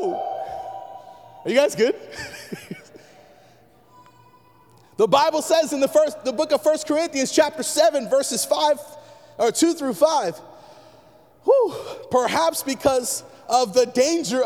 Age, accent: 30-49, American